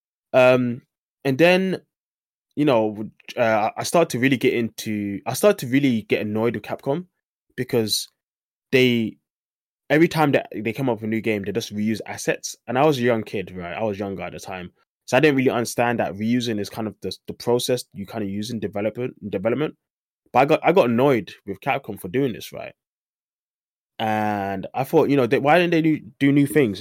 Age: 20-39